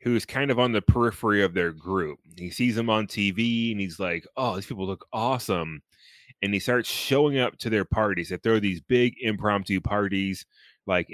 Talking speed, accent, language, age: 200 wpm, American, English, 20-39